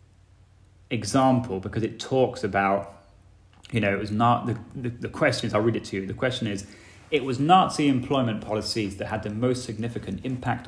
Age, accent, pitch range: 20-39, British, 95-120 Hz